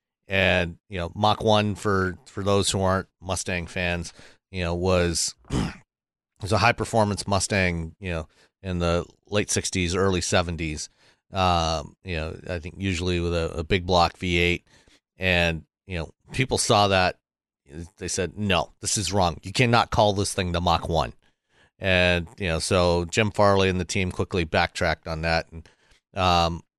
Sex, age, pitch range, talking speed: male, 40-59, 85-100 Hz, 170 wpm